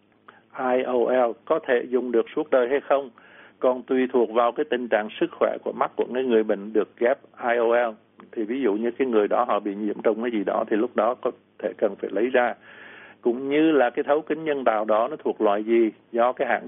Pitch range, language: 110-135 Hz, Vietnamese